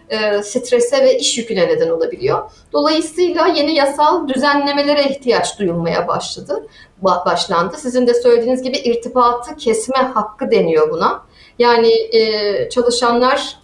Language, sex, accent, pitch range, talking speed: Turkish, female, native, 200-250 Hz, 120 wpm